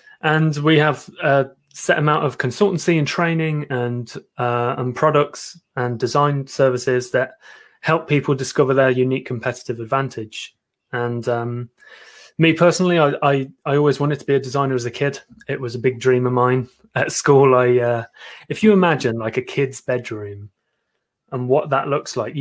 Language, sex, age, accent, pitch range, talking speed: English, male, 20-39, British, 125-155 Hz, 170 wpm